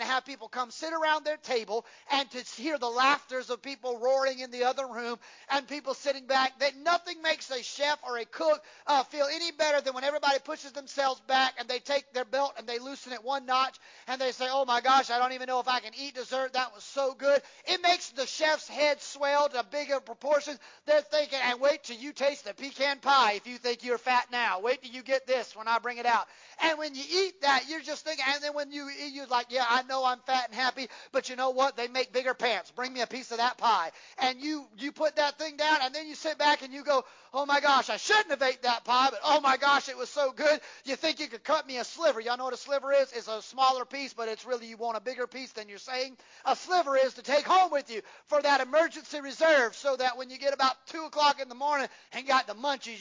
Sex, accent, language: male, American, English